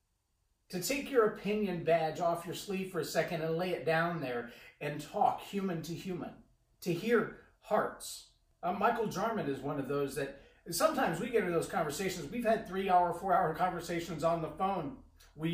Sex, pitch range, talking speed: male, 145-195 Hz, 190 wpm